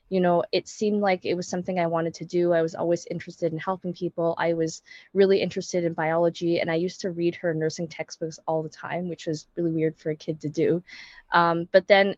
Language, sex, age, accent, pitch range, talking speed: English, female, 20-39, American, 165-190 Hz, 235 wpm